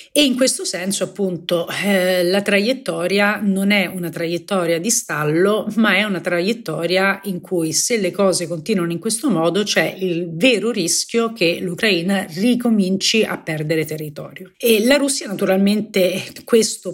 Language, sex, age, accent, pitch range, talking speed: Italian, female, 40-59, native, 180-230 Hz, 150 wpm